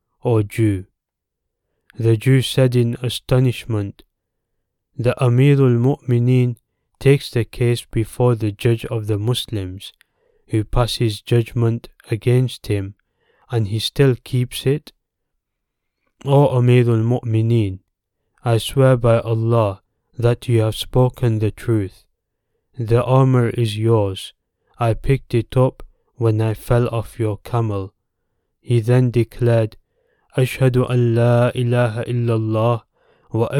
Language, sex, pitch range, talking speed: English, male, 110-125 Hz, 115 wpm